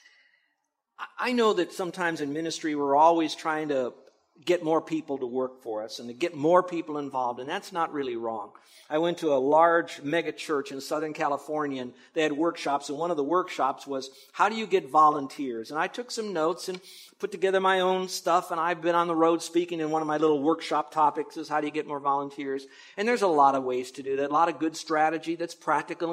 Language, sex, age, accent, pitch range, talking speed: English, male, 50-69, American, 150-185 Hz, 230 wpm